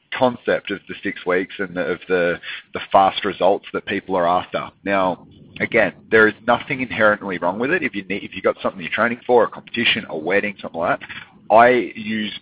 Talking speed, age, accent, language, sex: 210 wpm, 30-49, Australian, English, male